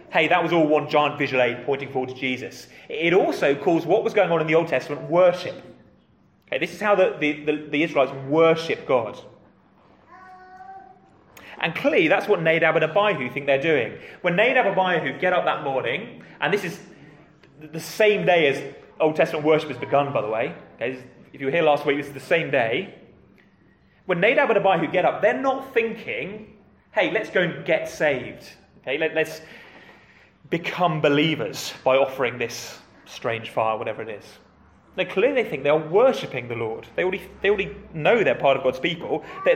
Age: 30-49